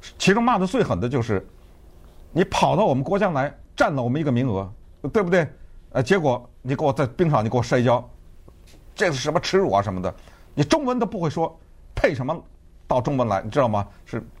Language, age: Chinese, 50-69